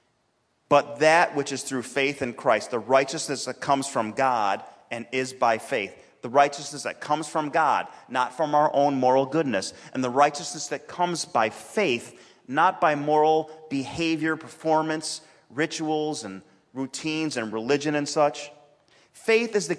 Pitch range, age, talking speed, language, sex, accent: 130-160 Hz, 30-49, 160 wpm, English, male, American